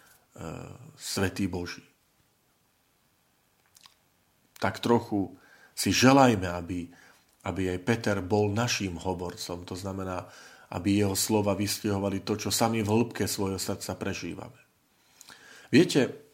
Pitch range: 95-115 Hz